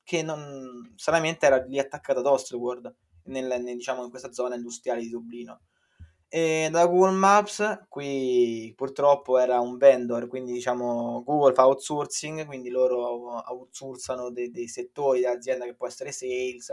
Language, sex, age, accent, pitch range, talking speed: Italian, male, 20-39, native, 125-155 Hz, 150 wpm